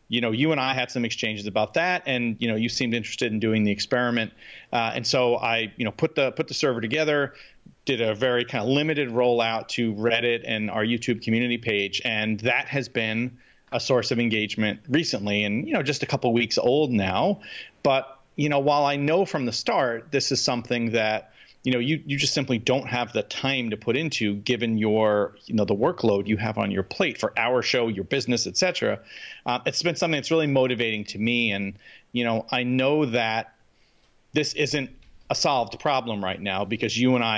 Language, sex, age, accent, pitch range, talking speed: English, male, 40-59, American, 110-130 Hz, 215 wpm